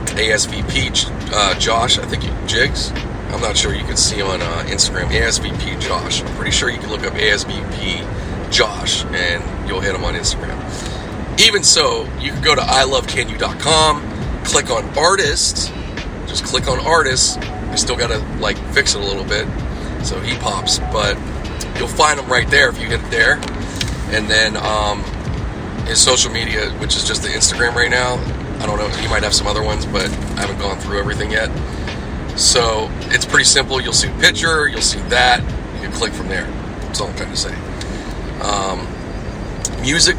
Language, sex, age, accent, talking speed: English, male, 30-49, American, 180 wpm